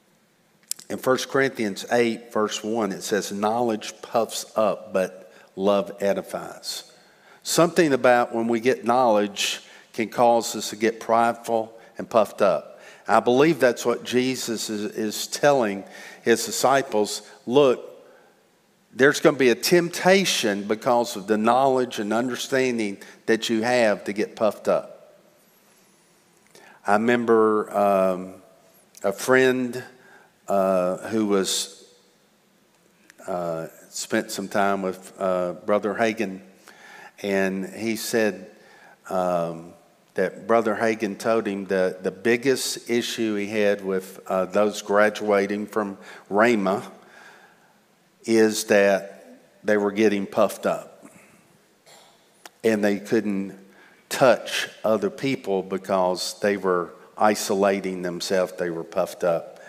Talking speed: 120 wpm